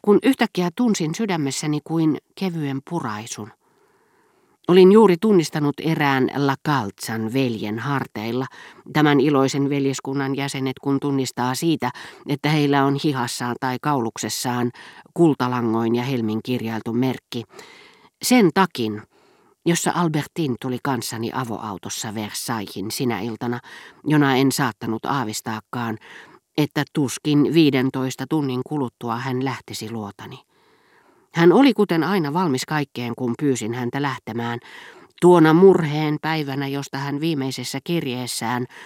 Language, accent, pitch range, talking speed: Finnish, native, 120-160 Hz, 110 wpm